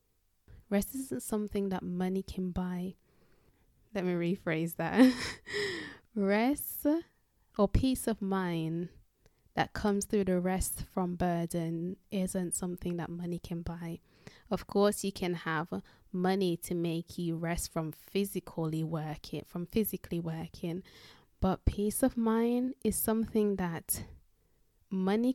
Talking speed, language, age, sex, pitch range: 125 wpm, English, 20-39, female, 175-205 Hz